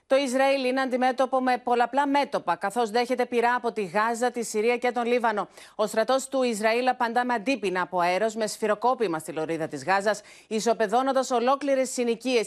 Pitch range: 220-265 Hz